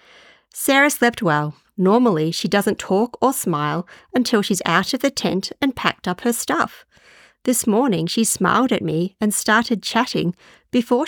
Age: 40-59